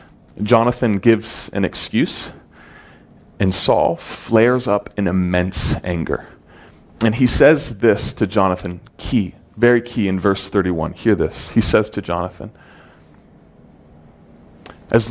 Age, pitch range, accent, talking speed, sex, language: 30-49, 100-160 Hz, American, 120 wpm, male, English